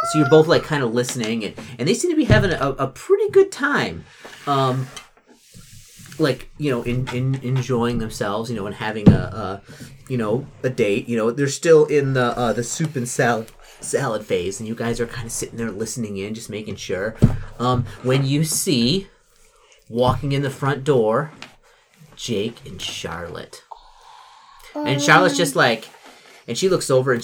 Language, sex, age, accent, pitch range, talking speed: English, male, 30-49, American, 120-155 Hz, 185 wpm